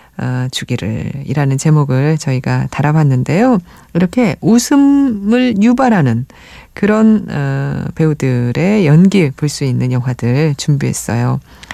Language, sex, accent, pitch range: Korean, female, native, 135-220 Hz